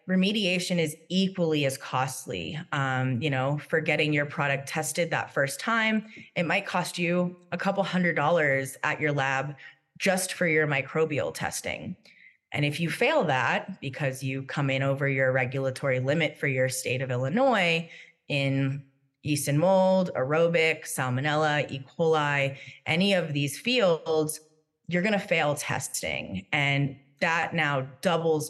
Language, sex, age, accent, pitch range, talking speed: English, female, 20-39, American, 135-165 Hz, 145 wpm